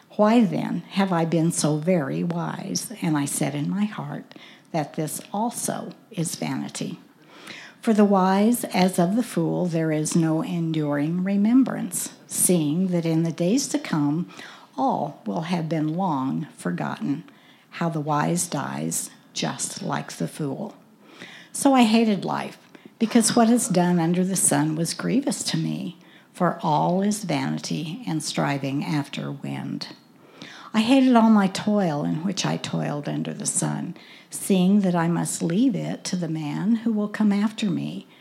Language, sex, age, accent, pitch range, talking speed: English, female, 60-79, American, 160-220 Hz, 160 wpm